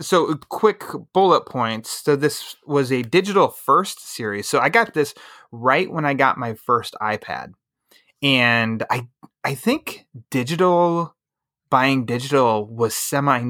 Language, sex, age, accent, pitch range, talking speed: English, male, 20-39, American, 115-150 Hz, 140 wpm